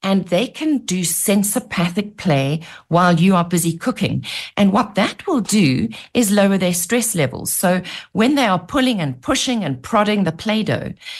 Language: English